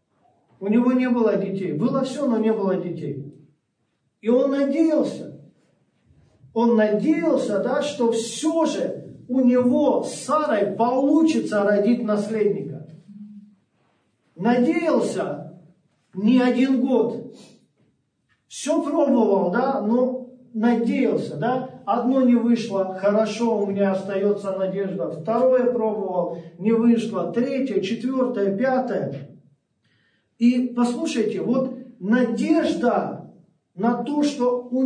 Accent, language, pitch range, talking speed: native, Russian, 205-255 Hz, 105 wpm